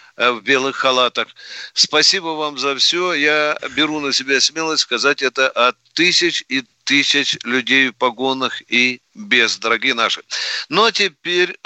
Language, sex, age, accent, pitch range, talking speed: Russian, male, 50-69, native, 130-175 Hz, 150 wpm